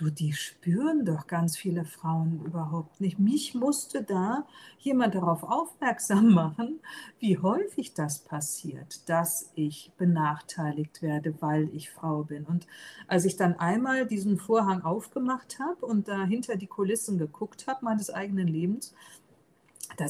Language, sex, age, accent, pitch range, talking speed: German, female, 50-69, German, 170-215 Hz, 140 wpm